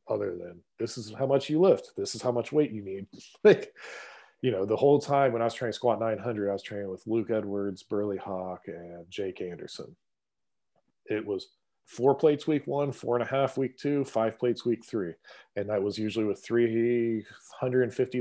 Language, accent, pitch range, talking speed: English, American, 100-130 Hz, 200 wpm